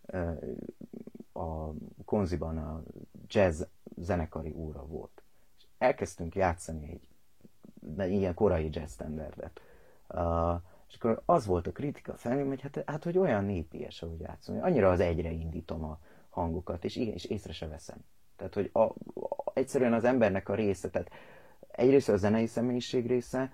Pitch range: 80-100 Hz